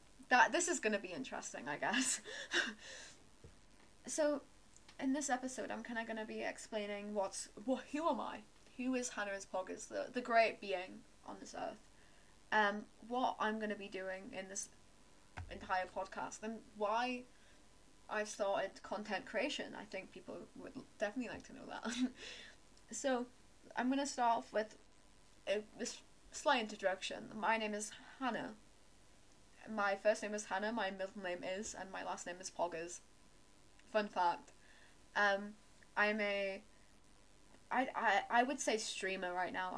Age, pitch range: 20-39, 195-245 Hz